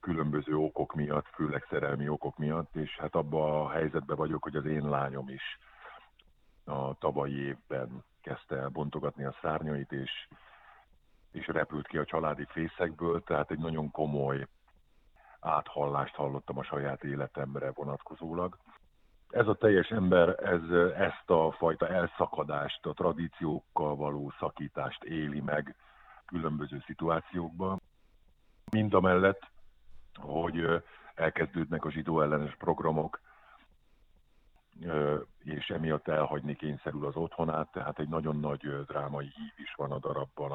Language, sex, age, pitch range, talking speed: Hungarian, male, 50-69, 70-80 Hz, 125 wpm